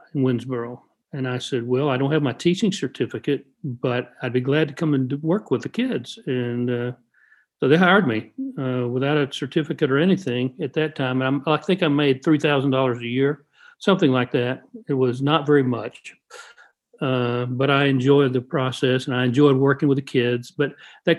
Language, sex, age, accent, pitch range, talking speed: English, male, 50-69, American, 125-145 Hz, 205 wpm